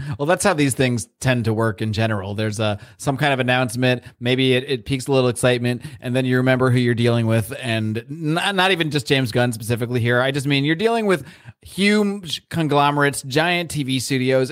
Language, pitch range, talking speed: English, 125-155 Hz, 210 wpm